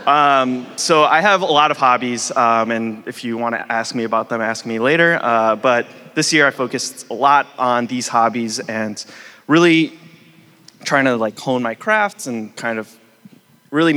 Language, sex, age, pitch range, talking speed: English, male, 20-39, 110-140 Hz, 190 wpm